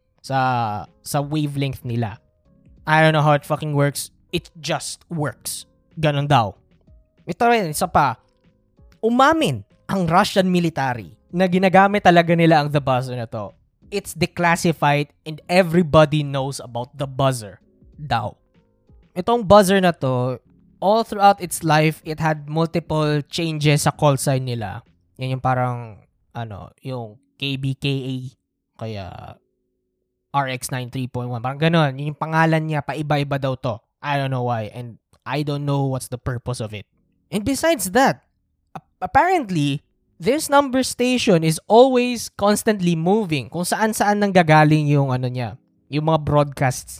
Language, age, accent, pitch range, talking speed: Filipino, 20-39, native, 125-170 Hz, 140 wpm